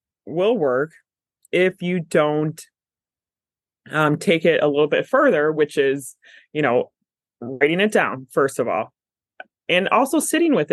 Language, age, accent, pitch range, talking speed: English, 20-39, American, 145-205 Hz, 145 wpm